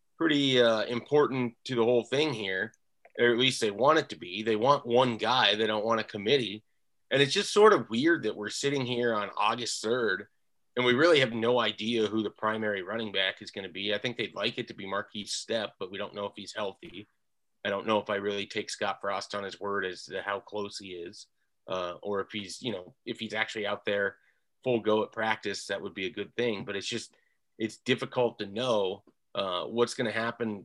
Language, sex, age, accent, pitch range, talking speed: English, male, 30-49, American, 105-130 Hz, 235 wpm